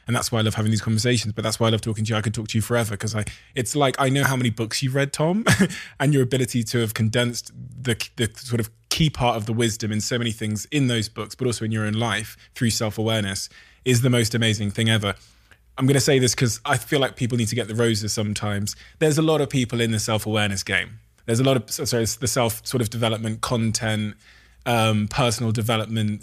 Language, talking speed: English, 250 wpm